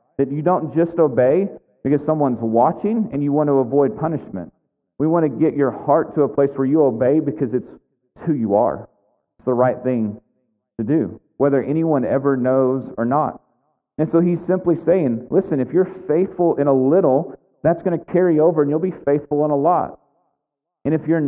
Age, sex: 40-59, male